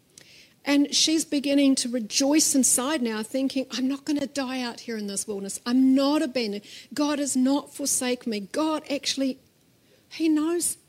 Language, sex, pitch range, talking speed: English, female, 185-265 Hz, 165 wpm